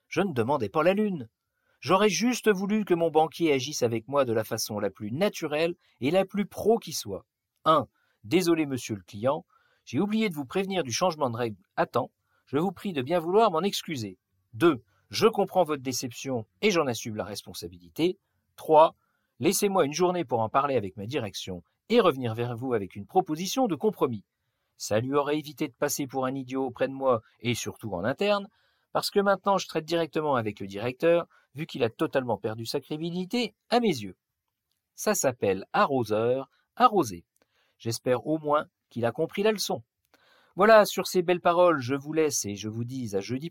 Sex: male